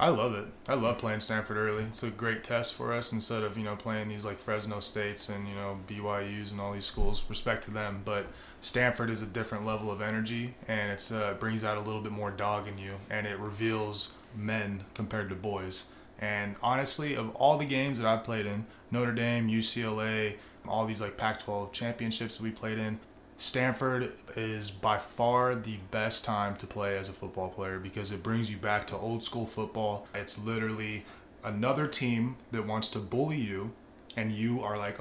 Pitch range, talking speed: 105-120 Hz, 200 wpm